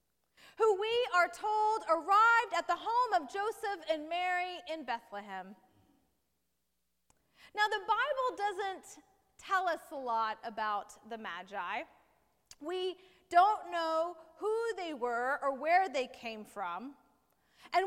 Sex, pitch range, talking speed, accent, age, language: female, 255-370 Hz, 125 wpm, American, 30-49, English